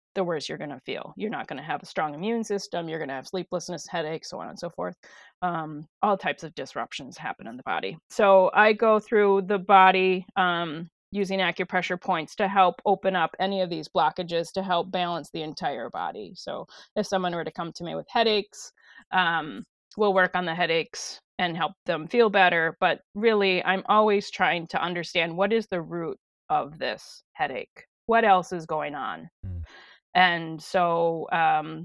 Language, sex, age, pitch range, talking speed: English, female, 20-39, 170-200 Hz, 185 wpm